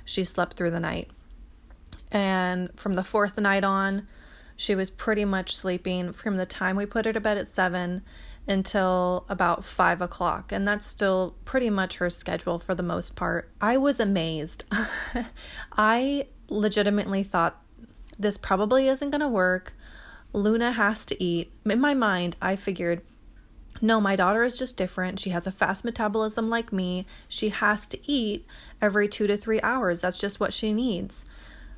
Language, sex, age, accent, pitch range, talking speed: English, female, 20-39, American, 185-215 Hz, 170 wpm